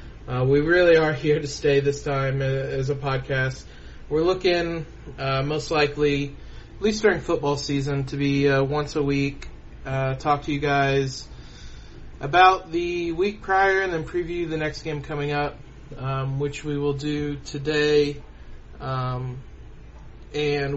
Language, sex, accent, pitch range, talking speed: English, male, American, 135-155 Hz, 155 wpm